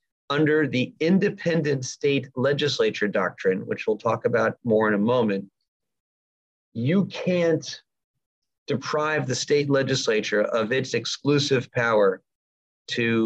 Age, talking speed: 40-59, 115 wpm